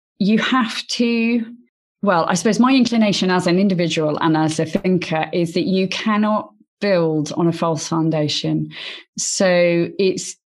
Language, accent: English, British